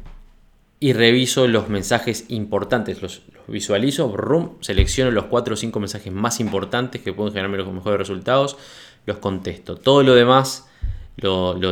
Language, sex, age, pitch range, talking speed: Spanish, male, 20-39, 95-120 Hz, 155 wpm